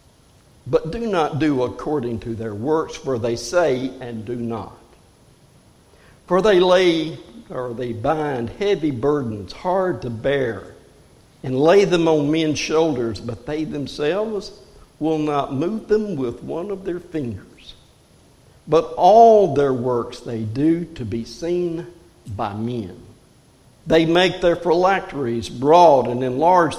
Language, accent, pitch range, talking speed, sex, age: English, American, 125-170 Hz, 135 wpm, male, 60-79